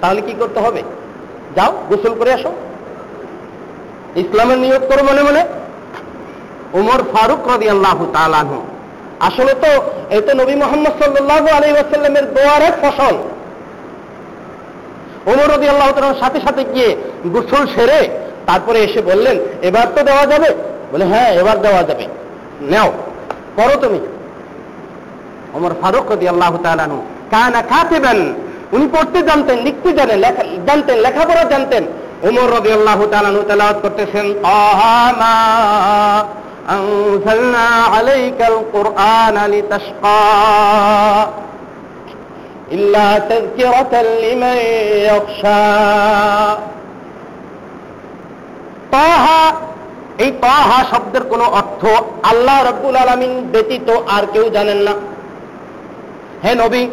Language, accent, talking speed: Bengali, native, 75 wpm